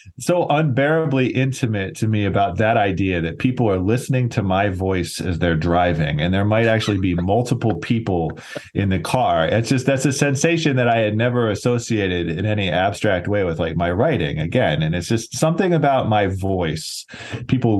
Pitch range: 90-120 Hz